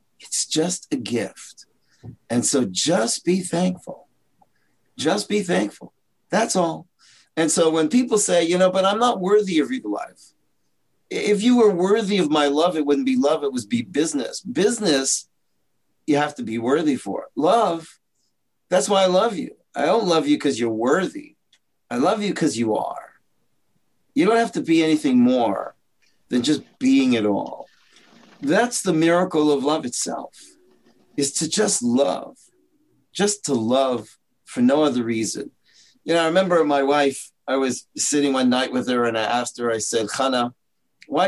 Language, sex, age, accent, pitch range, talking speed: English, male, 50-69, American, 135-210 Hz, 175 wpm